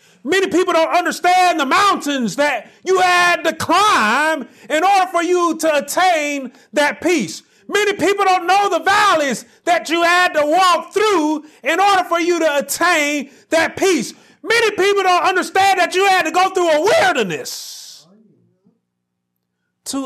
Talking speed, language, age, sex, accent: 155 wpm, English, 40-59, male, American